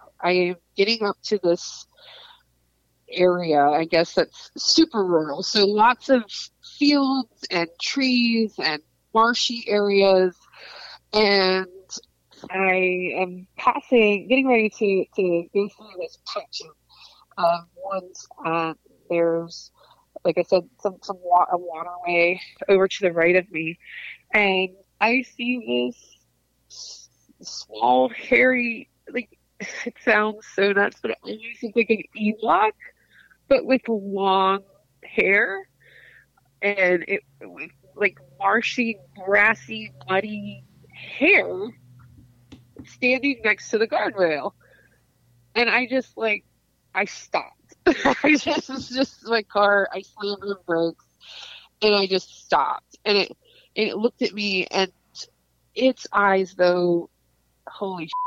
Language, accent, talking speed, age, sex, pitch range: English, American, 120 wpm, 20-39, female, 175-235 Hz